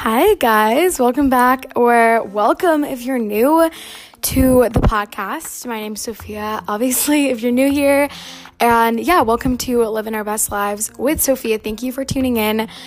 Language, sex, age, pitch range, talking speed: English, female, 10-29, 210-260 Hz, 170 wpm